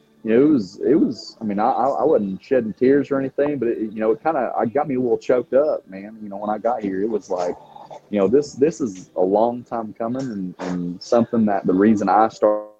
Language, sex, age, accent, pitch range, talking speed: English, male, 30-49, American, 95-115 Hz, 265 wpm